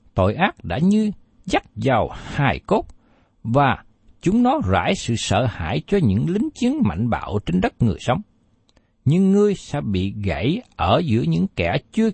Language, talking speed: Vietnamese, 175 wpm